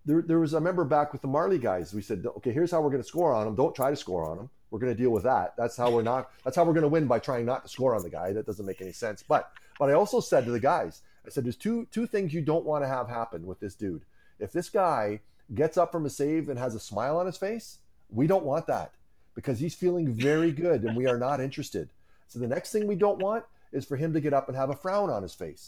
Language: English